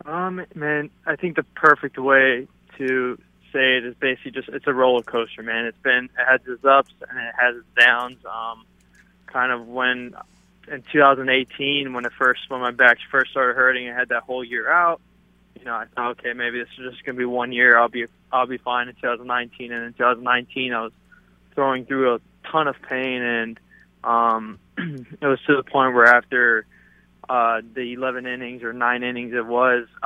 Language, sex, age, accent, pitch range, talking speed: English, male, 20-39, American, 120-130 Hz, 200 wpm